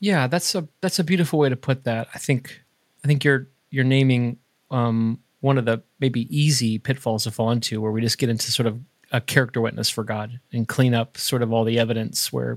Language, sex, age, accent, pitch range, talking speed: English, male, 30-49, American, 115-145 Hz, 230 wpm